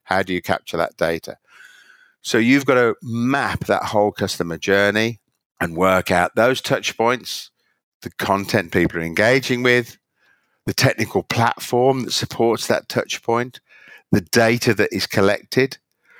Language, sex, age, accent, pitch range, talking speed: English, male, 50-69, British, 100-125 Hz, 150 wpm